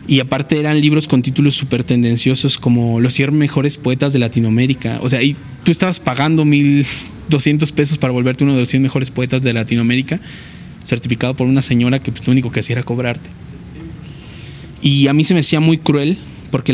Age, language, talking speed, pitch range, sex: 20-39, Spanish, 195 wpm, 125-140 Hz, male